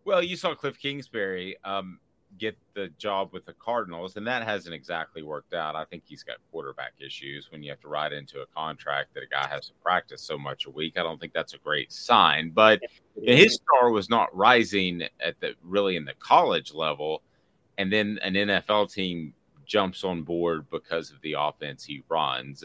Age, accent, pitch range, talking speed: 30-49, American, 75-100 Hz, 200 wpm